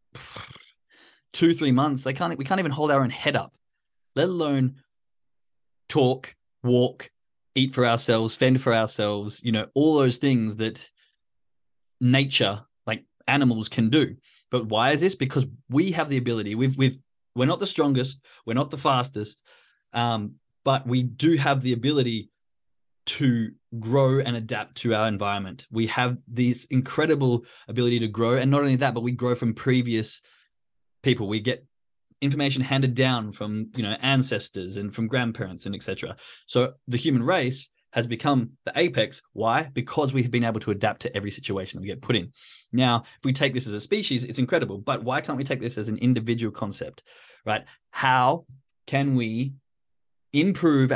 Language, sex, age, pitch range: English, male, 20-39, 115-135 Hz